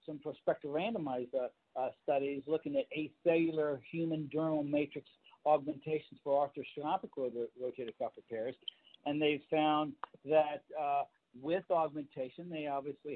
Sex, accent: male, American